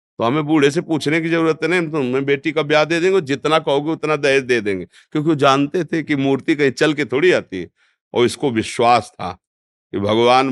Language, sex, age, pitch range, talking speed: Hindi, male, 50-69, 120-160 Hz, 220 wpm